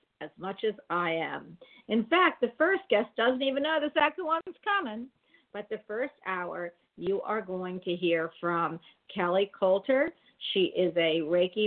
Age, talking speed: 50-69, 175 wpm